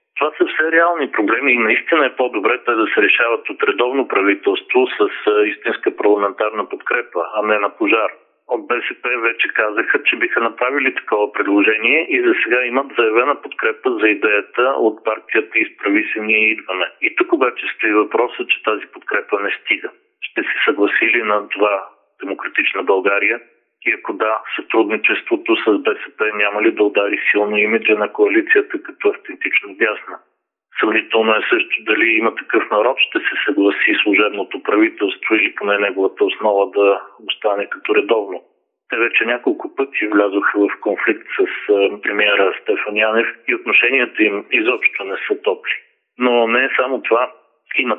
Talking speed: 155 wpm